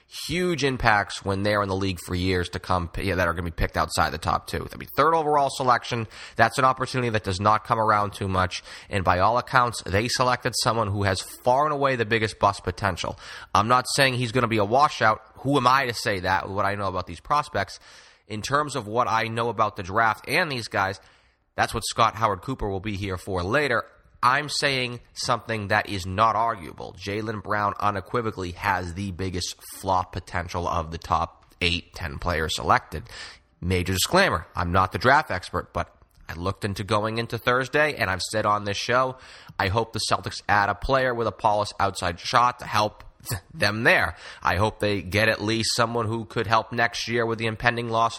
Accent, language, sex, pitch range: American, English, male, 95-120 Hz